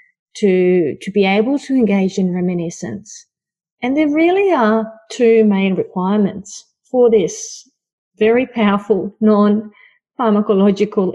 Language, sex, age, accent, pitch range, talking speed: English, female, 30-49, Australian, 185-250 Hz, 110 wpm